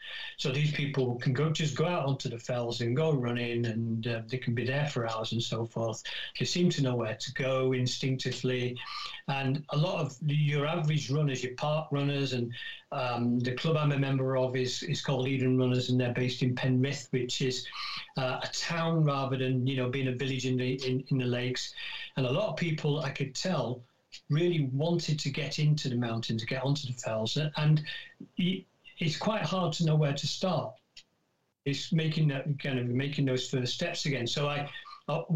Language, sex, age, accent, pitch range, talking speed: English, male, 50-69, British, 125-155 Hz, 205 wpm